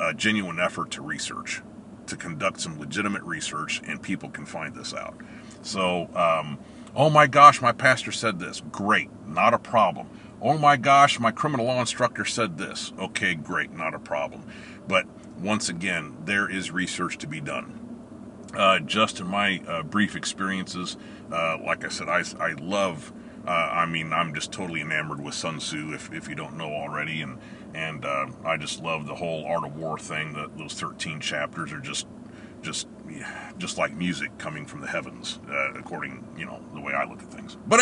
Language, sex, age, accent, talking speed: English, male, 40-59, American, 190 wpm